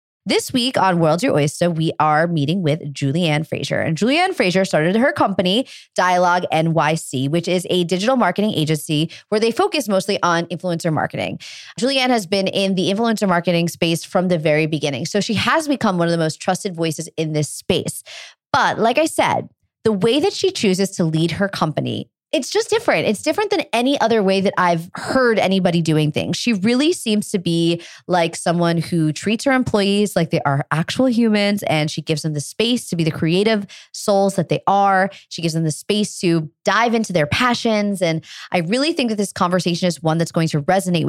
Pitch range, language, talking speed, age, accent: 165-220 Hz, English, 205 wpm, 20-39, American